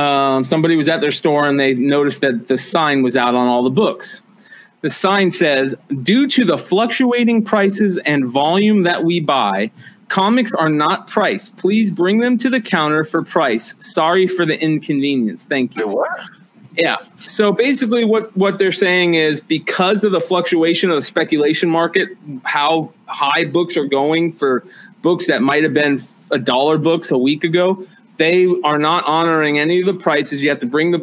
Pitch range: 140-185 Hz